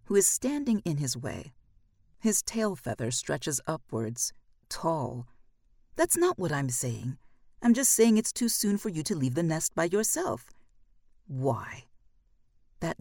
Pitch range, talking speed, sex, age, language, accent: 120-200 Hz, 150 wpm, female, 50-69, English, American